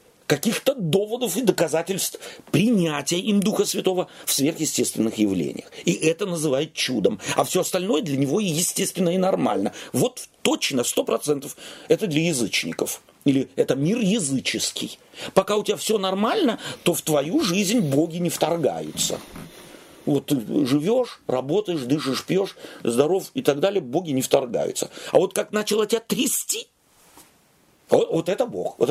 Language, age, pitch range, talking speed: Russian, 40-59, 145-225 Hz, 145 wpm